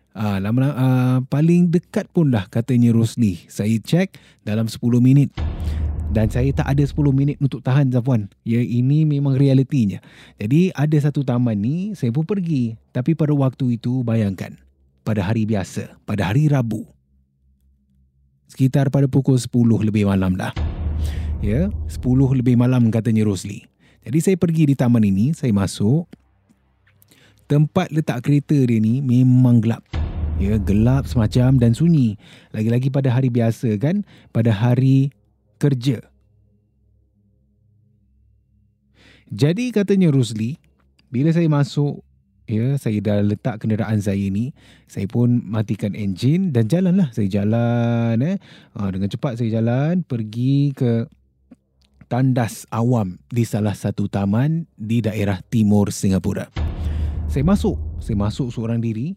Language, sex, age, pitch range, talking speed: Malay, male, 20-39, 100-135 Hz, 135 wpm